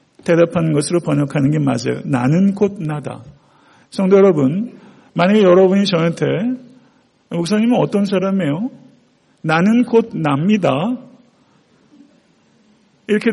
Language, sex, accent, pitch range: Korean, male, native, 165-215 Hz